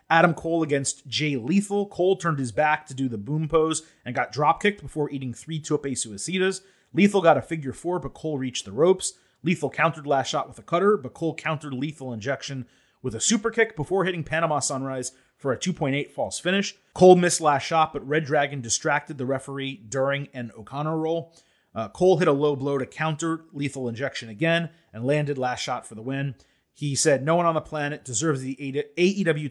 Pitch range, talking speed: 135-165 Hz, 200 wpm